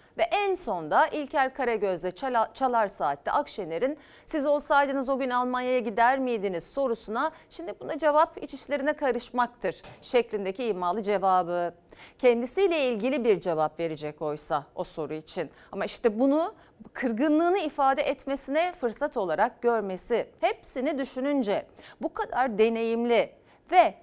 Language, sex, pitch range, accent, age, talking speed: Turkish, female, 205-280 Hz, native, 40-59, 125 wpm